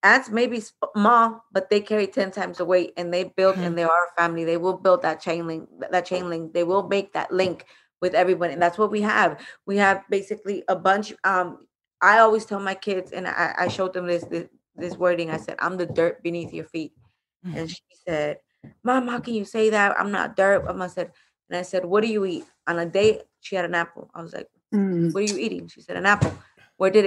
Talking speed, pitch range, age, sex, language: 240 wpm, 170-205 Hz, 20-39, female, English